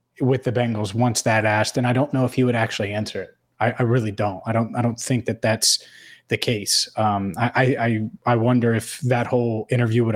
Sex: male